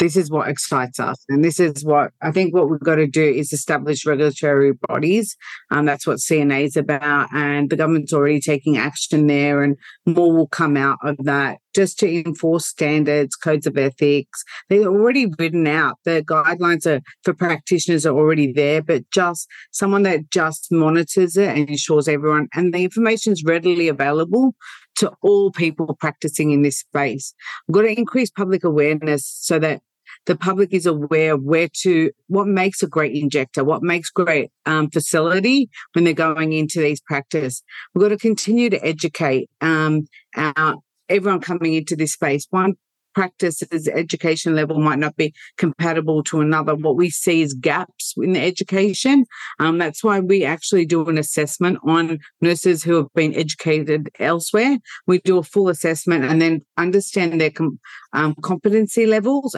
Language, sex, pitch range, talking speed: English, female, 150-180 Hz, 170 wpm